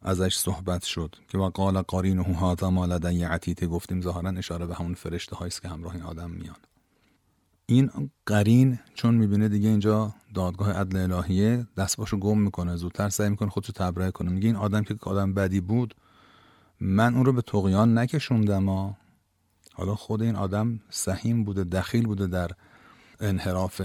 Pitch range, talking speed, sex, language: 90-110 Hz, 160 wpm, male, Persian